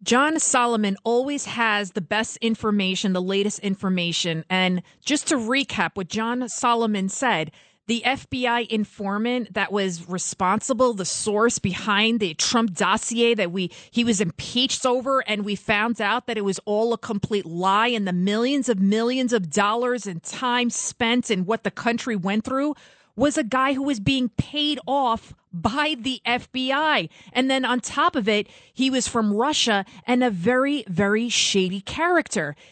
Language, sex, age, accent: English, female, 30-49, American